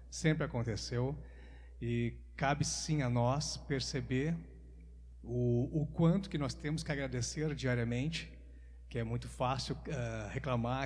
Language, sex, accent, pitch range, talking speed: Portuguese, male, Brazilian, 120-155 Hz, 125 wpm